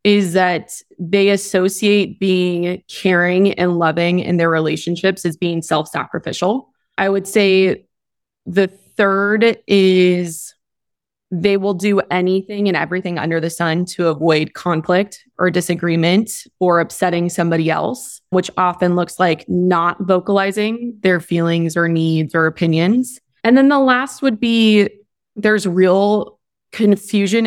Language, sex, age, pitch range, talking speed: English, female, 20-39, 170-200 Hz, 130 wpm